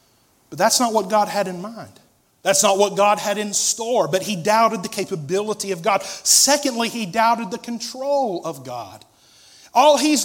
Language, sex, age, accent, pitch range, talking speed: English, male, 30-49, American, 170-265 Hz, 180 wpm